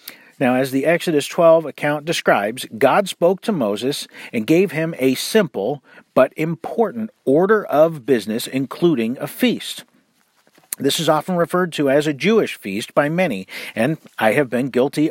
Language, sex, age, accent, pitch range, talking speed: English, male, 50-69, American, 145-195 Hz, 160 wpm